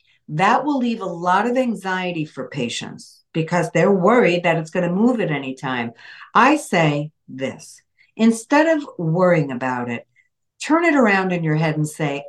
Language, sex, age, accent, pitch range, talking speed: English, female, 50-69, American, 165-240 Hz, 170 wpm